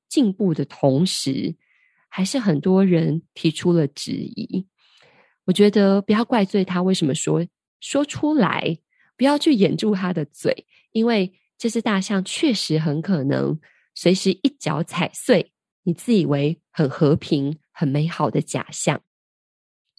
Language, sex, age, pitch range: Chinese, female, 20-39, 160-200 Hz